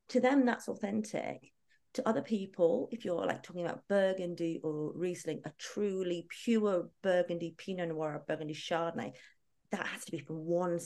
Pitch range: 155-235 Hz